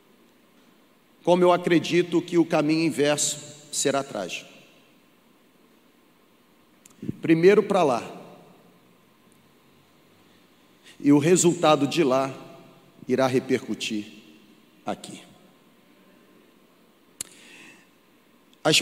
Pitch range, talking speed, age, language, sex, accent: 140-185 Hz, 65 wpm, 40-59, Portuguese, male, Brazilian